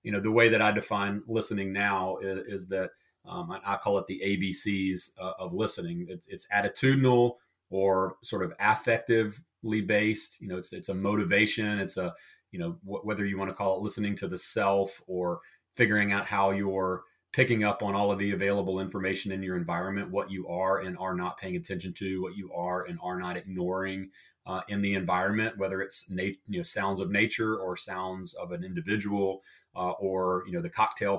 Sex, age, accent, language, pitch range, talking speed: male, 30-49, American, English, 95-110 Hz, 200 wpm